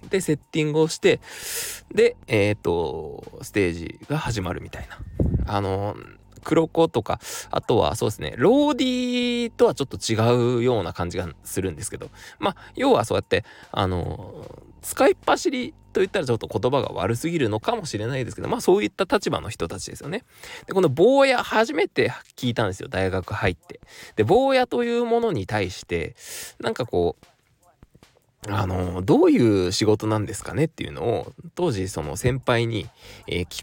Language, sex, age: Japanese, male, 20-39